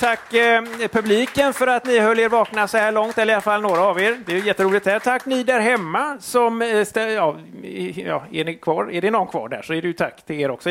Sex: male